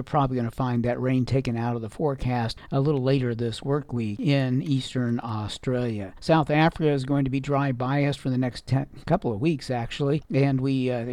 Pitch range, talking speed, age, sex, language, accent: 125-150 Hz, 205 wpm, 50-69, male, English, American